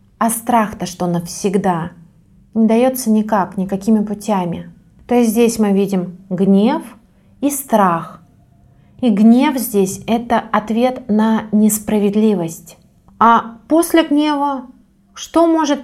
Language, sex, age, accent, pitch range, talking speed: Russian, female, 30-49, native, 195-240 Hz, 110 wpm